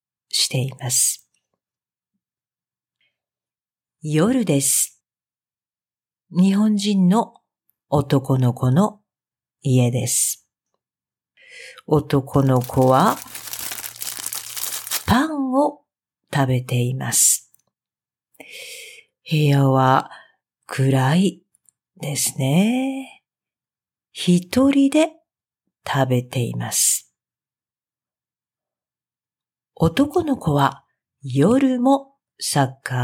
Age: 50-69